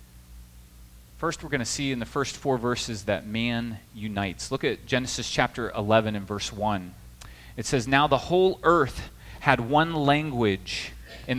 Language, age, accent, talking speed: English, 30-49, American, 165 wpm